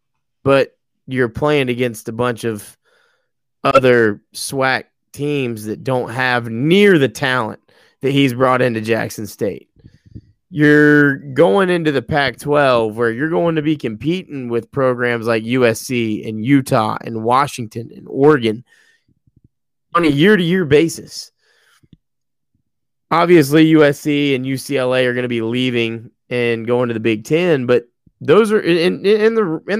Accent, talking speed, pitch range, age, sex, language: American, 140 wpm, 120-155 Hz, 20-39, male, English